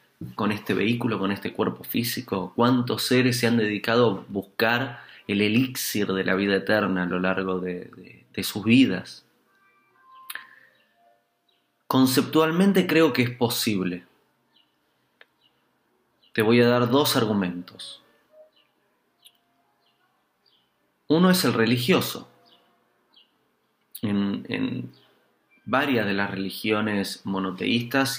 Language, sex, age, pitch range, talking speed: Spanish, male, 30-49, 105-130 Hz, 105 wpm